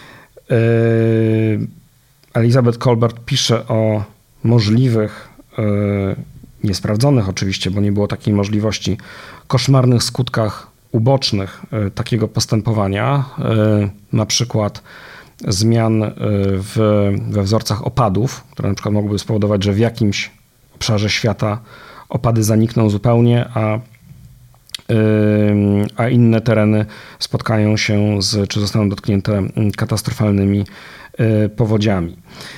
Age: 40-59